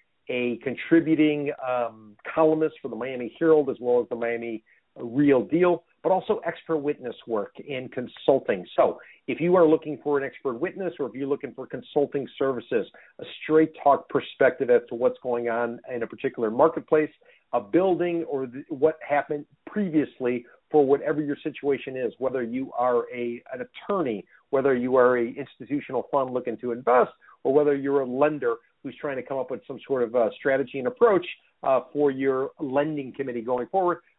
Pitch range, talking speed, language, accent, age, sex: 130-160 Hz, 180 wpm, English, American, 50-69, male